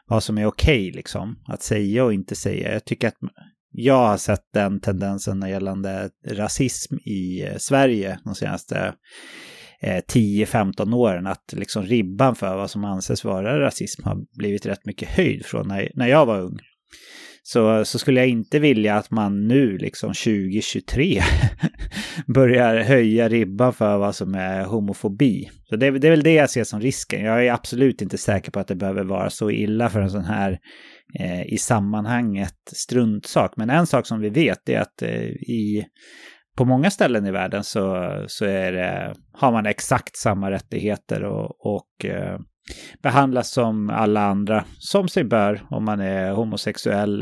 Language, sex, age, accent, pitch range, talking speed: English, male, 30-49, Swedish, 100-120 Hz, 170 wpm